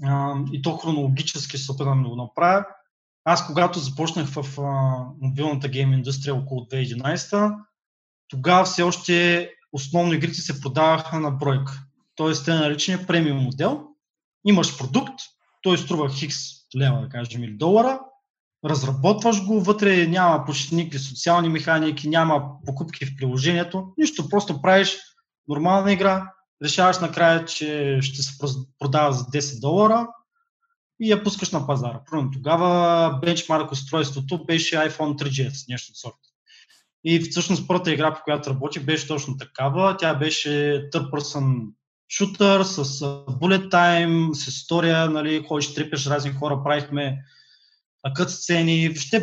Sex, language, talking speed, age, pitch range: male, Bulgarian, 130 wpm, 20-39, 140-175 Hz